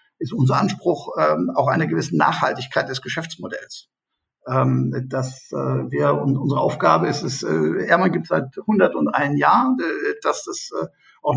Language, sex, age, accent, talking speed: German, male, 50-69, German, 160 wpm